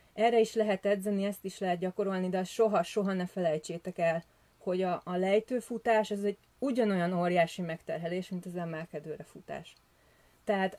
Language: Hungarian